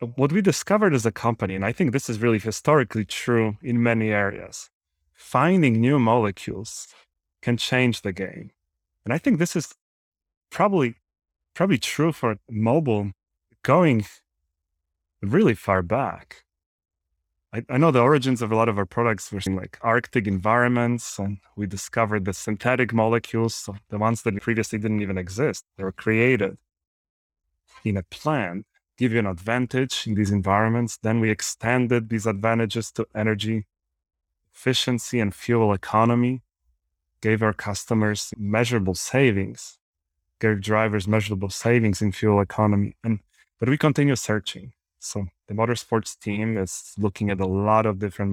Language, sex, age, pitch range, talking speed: English, male, 30-49, 95-115 Hz, 145 wpm